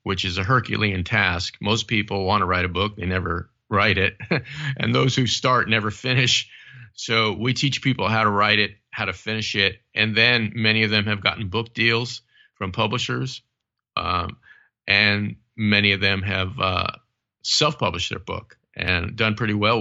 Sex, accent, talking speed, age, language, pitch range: male, American, 180 wpm, 40-59, English, 95-115 Hz